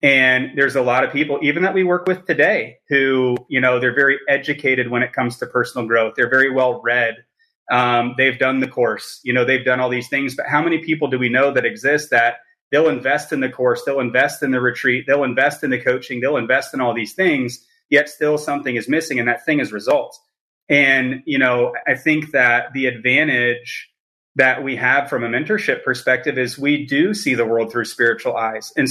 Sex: male